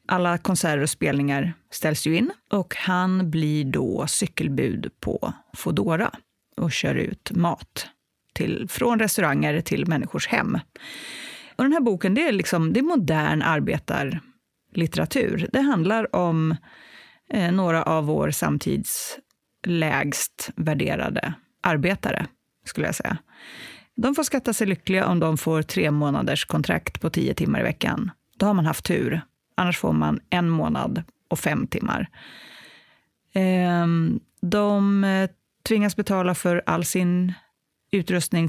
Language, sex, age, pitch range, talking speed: English, female, 30-49, 165-215 Hz, 135 wpm